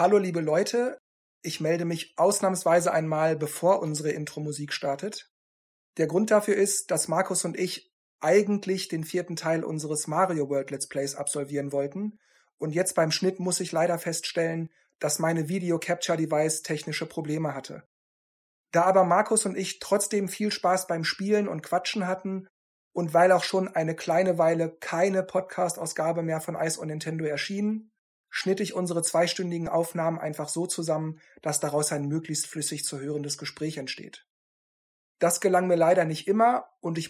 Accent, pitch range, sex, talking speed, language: German, 160-190 Hz, male, 160 wpm, German